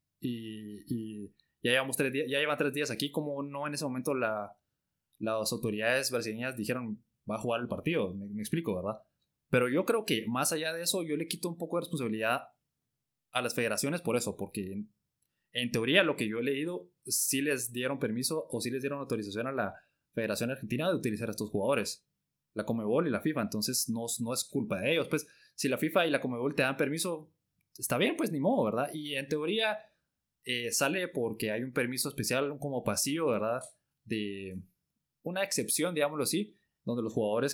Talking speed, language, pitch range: 200 wpm, Spanish, 110-140 Hz